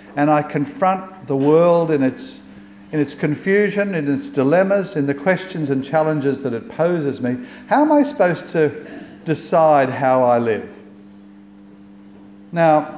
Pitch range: 100-150 Hz